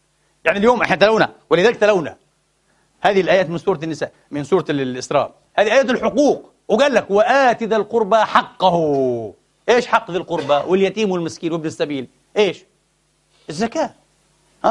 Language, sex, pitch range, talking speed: Arabic, male, 175-230 Hz, 135 wpm